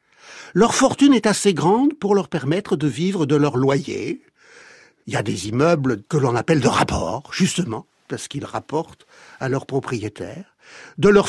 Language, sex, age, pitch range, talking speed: French, male, 60-79, 145-215 Hz, 170 wpm